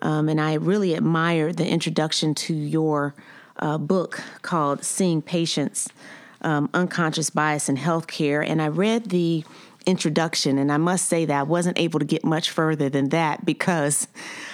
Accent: American